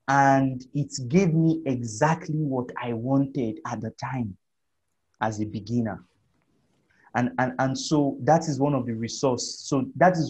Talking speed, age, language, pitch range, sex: 155 wpm, 30-49, English, 115-150 Hz, male